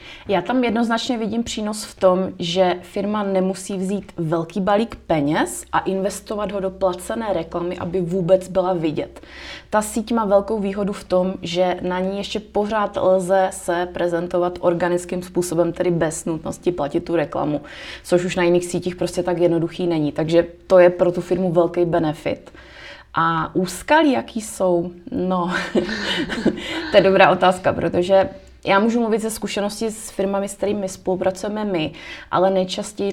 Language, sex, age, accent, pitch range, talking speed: Czech, female, 20-39, native, 175-200 Hz, 160 wpm